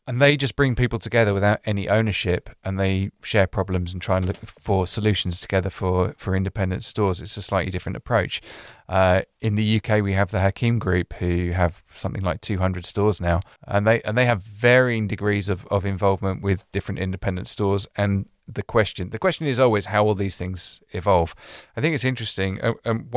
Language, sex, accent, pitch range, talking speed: English, male, British, 95-110 Hz, 200 wpm